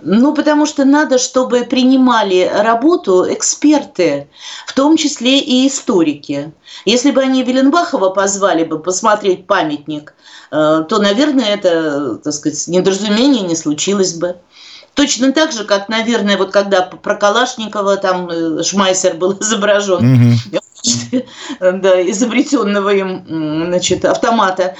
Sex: female